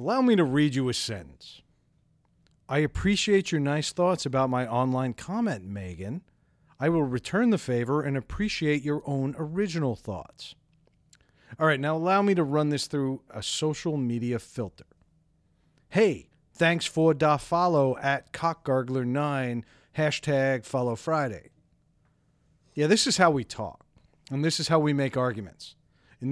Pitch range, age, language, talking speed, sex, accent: 125-165 Hz, 40-59, English, 145 wpm, male, American